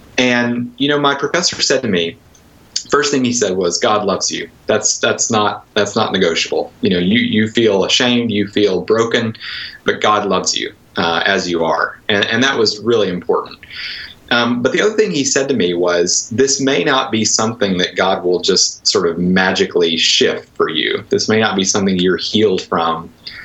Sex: male